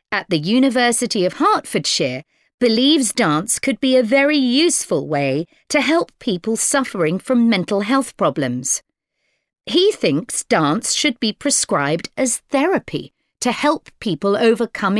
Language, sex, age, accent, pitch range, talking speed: English, female, 50-69, British, 175-270 Hz, 130 wpm